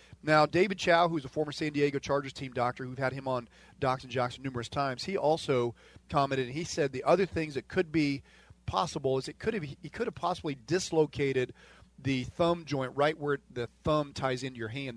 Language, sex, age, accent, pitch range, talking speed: English, male, 40-59, American, 120-155 Hz, 215 wpm